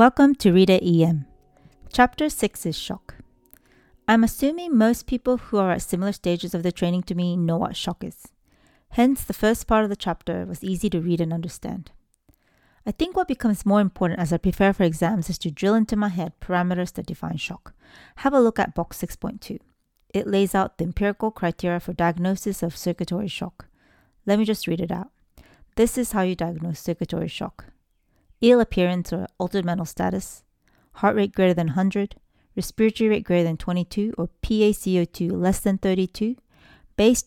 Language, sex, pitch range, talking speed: English, female, 170-210 Hz, 180 wpm